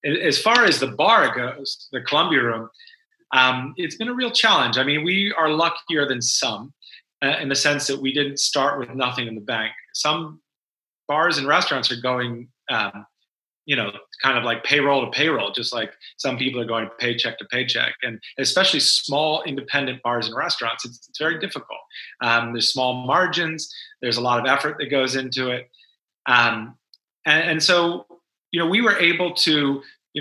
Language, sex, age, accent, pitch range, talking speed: English, male, 30-49, American, 130-160 Hz, 185 wpm